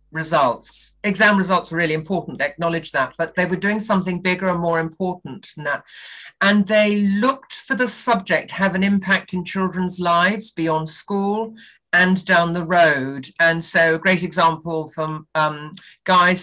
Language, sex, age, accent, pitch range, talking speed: English, female, 50-69, British, 160-200 Hz, 170 wpm